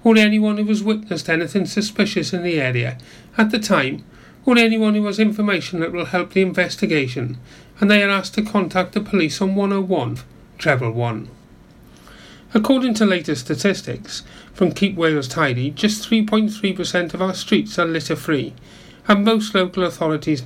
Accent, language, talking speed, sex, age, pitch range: British, English, 160 wpm, male, 40-59, 155-205 Hz